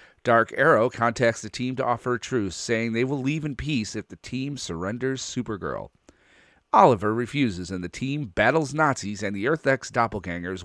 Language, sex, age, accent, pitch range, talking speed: English, male, 40-59, American, 110-145 Hz, 180 wpm